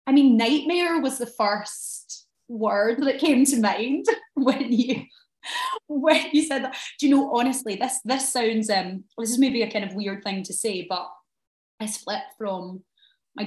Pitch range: 190-240 Hz